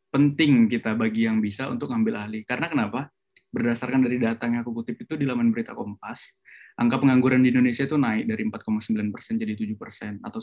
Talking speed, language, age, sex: 195 wpm, English, 20-39, male